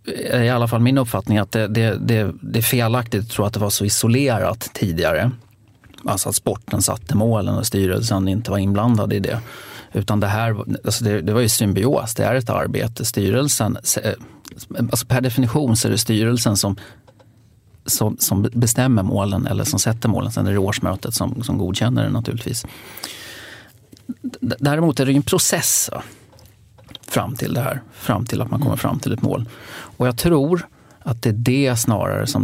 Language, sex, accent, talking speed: English, male, Swedish, 180 wpm